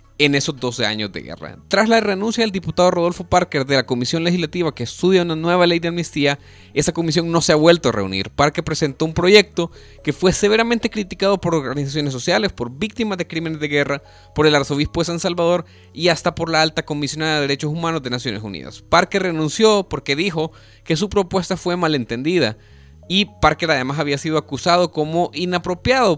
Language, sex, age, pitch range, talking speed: Spanish, male, 30-49, 135-170 Hz, 195 wpm